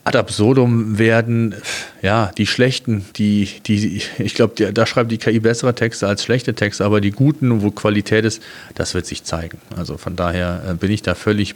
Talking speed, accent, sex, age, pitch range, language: 185 wpm, German, male, 40-59, 105-125 Hz, German